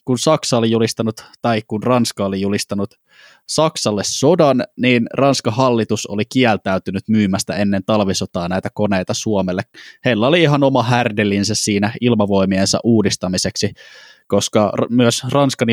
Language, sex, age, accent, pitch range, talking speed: Finnish, male, 20-39, native, 100-135 Hz, 125 wpm